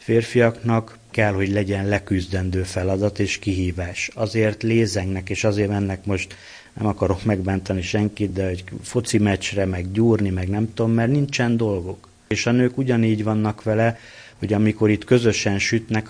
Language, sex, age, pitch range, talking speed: Hungarian, male, 30-49, 95-115 Hz, 155 wpm